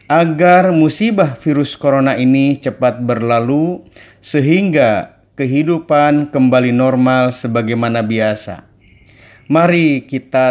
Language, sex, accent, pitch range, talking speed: Indonesian, male, native, 115-150 Hz, 85 wpm